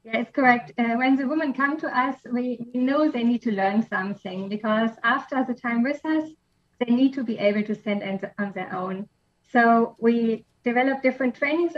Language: English